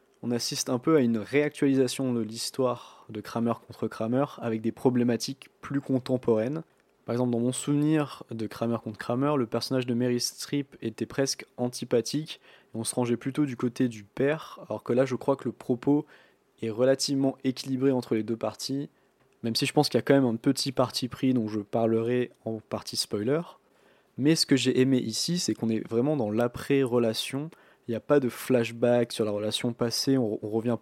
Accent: French